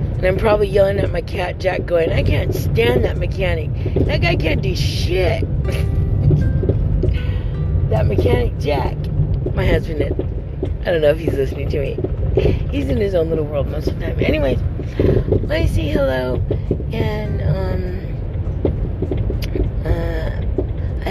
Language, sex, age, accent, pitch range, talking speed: English, female, 30-49, American, 85-105 Hz, 140 wpm